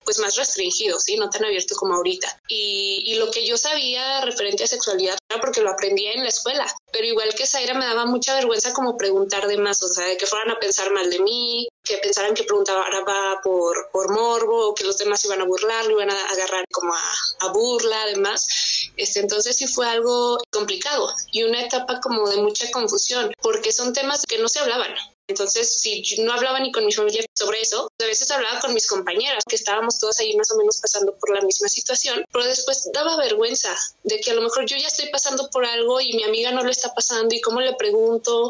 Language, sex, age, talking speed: Spanish, female, 20-39, 225 wpm